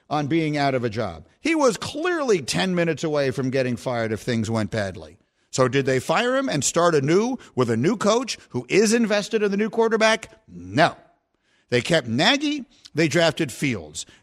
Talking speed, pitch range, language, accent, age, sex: 190 wpm, 125-210 Hz, English, American, 50-69, male